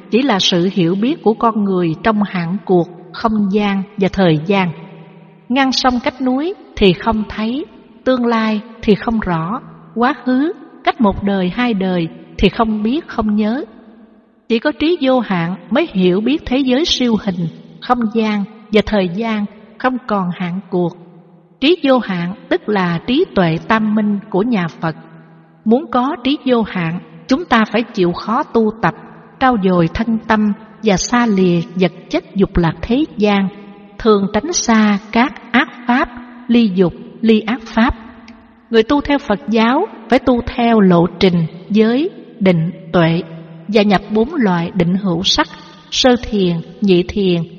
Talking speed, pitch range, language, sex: 170 wpm, 185-235 Hz, Vietnamese, female